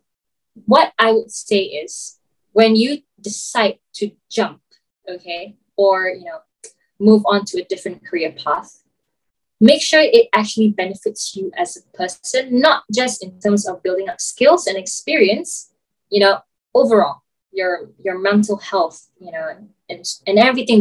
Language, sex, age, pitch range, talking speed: Malay, female, 20-39, 185-245 Hz, 150 wpm